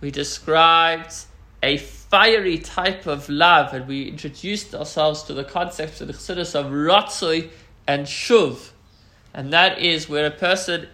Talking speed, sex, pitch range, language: 135 wpm, male, 145-200 Hz, English